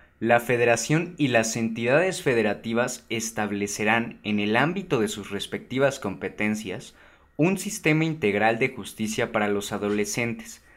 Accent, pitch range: Mexican, 100-120 Hz